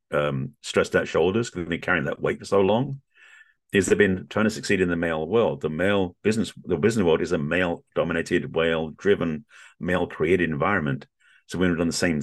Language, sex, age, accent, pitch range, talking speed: English, male, 50-69, British, 80-100 Hz, 210 wpm